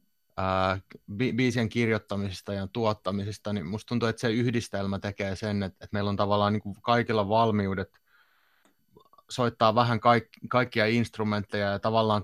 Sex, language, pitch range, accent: male, Finnish, 100-110 Hz, native